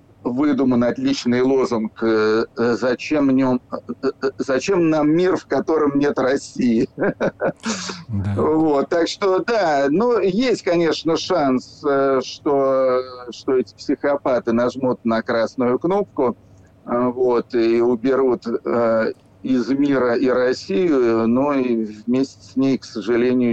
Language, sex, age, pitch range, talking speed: Russian, male, 50-69, 125-150 Hz, 95 wpm